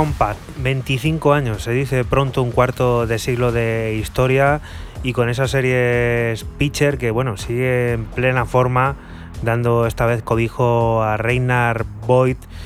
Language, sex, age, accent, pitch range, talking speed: Spanish, male, 20-39, Spanish, 115-130 Hz, 135 wpm